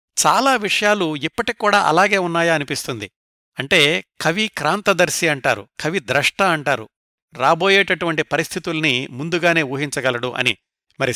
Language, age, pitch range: Telugu, 60-79, 140-185 Hz